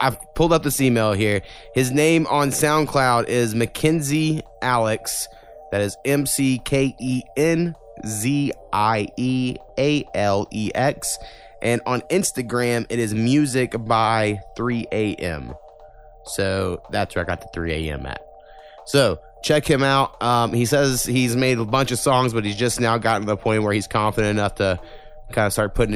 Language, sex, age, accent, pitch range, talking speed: English, male, 20-39, American, 100-135 Hz, 140 wpm